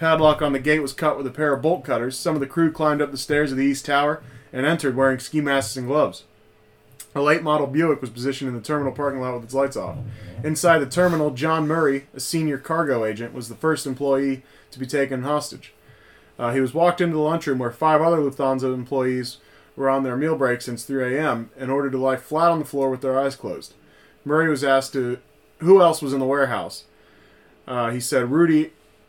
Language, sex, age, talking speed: English, male, 20-39, 225 wpm